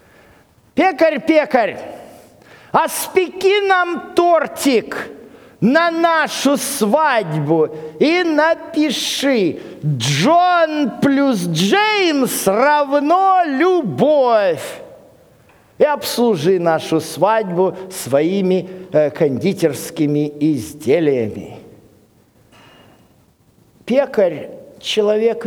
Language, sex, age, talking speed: Russian, male, 50-69, 55 wpm